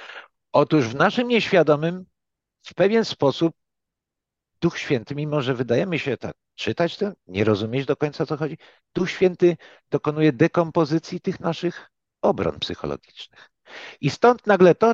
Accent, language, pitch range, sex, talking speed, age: native, Polish, 115-175 Hz, male, 135 wpm, 50-69